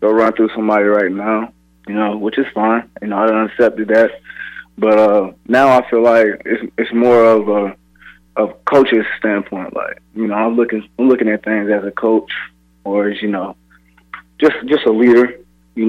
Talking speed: 190 wpm